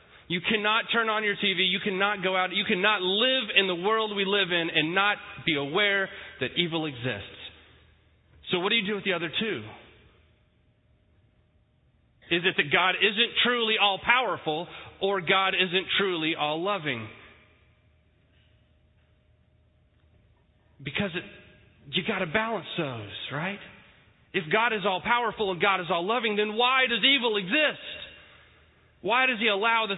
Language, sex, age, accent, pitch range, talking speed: English, male, 30-49, American, 130-205 Hz, 145 wpm